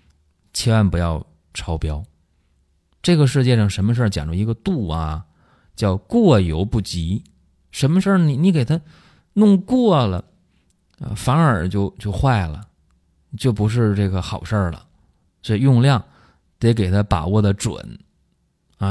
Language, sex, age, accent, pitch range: Chinese, male, 20-39, native, 85-115 Hz